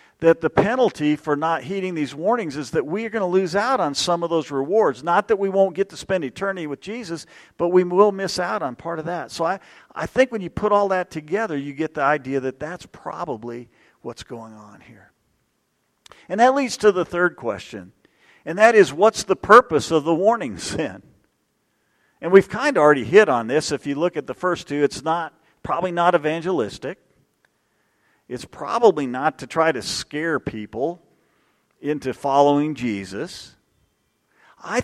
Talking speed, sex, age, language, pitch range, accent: 190 wpm, male, 50-69, English, 145-195 Hz, American